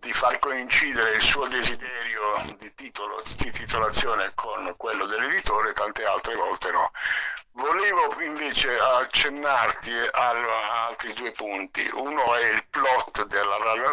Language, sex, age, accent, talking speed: Italian, male, 60-79, native, 130 wpm